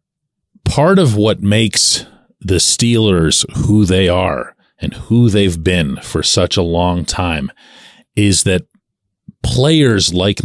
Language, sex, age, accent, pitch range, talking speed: English, male, 40-59, American, 100-150 Hz, 125 wpm